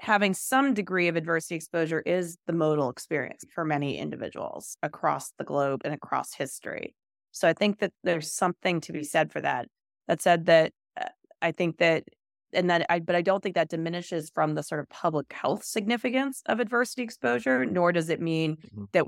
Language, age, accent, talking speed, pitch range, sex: English, 30-49, American, 190 wpm, 155-195 Hz, female